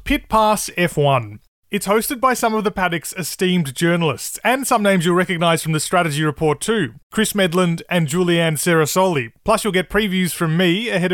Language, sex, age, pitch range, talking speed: English, male, 30-49, 145-200 Hz, 185 wpm